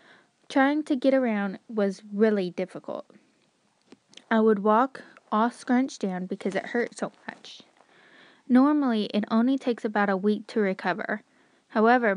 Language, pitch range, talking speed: English, 195-240 Hz, 140 wpm